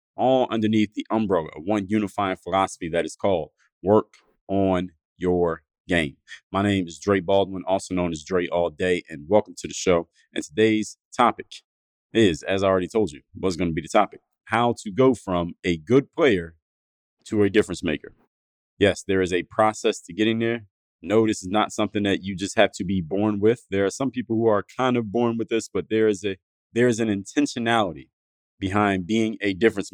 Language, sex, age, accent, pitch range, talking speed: English, male, 30-49, American, 95-110 Hz, 200 wpm